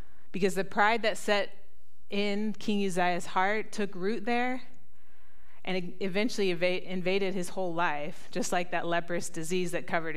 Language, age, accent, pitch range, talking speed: English, 30-49, American, 170-195 Hz, 150 wpm